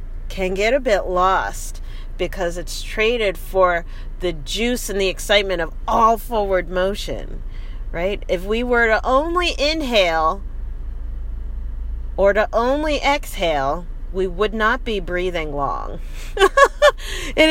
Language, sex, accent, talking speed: English, female, American, 125 wpm